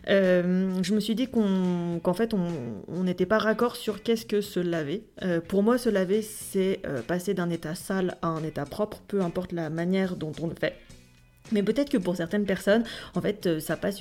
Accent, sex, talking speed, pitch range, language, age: French, female, 220 wpm, 170-210 Hz, French, 30-49